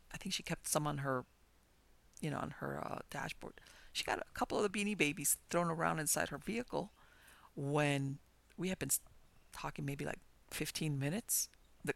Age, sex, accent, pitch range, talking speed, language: 50-69, female, American, 145-220 Hz, 180 wpm, English